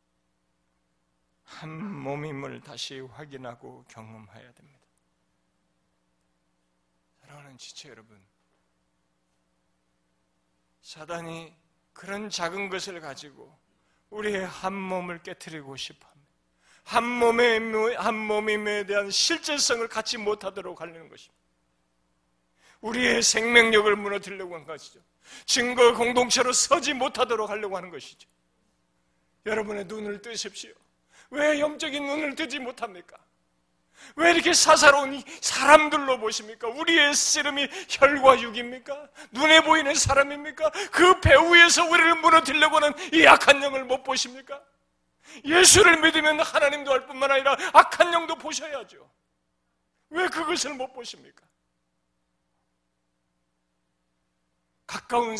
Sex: male